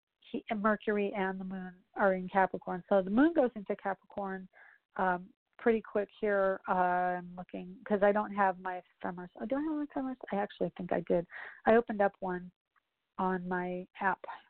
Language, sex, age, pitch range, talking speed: English, female, 30-49, 190-220 Hz, 180 wpm